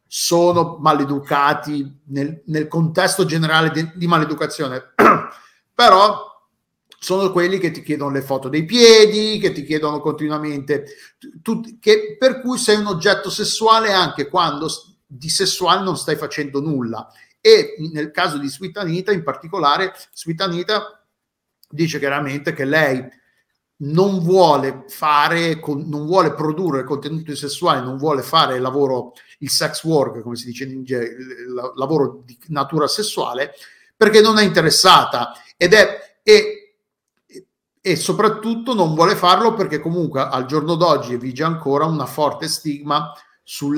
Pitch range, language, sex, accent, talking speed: 140-185 Hz, Italian, male, native, 140 wpm